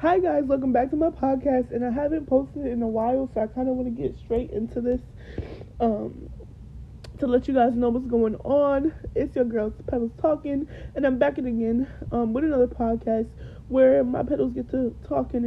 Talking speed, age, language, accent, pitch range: 205 wpm, 20-39, English, American, 245-315 Hz